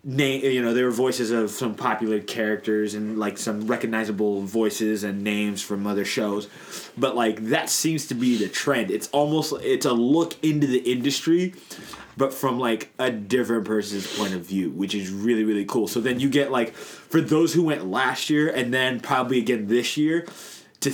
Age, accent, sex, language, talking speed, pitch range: 20-39, American, male, English, 195 wpm, 110-145 Hz